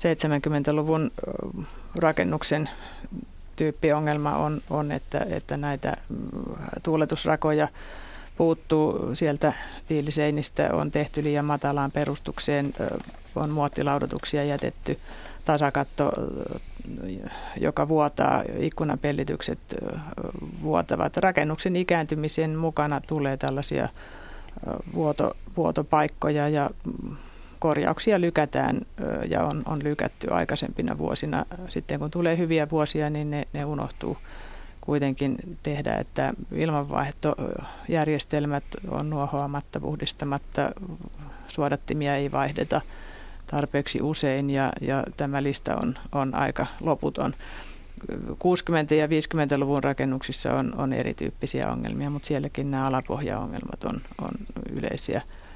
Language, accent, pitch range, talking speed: Finnish, native, 140-155 Hz, 90 wpm